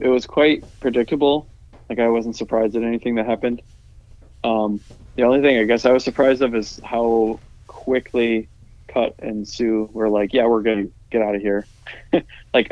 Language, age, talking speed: English, 20-39, 185 wpm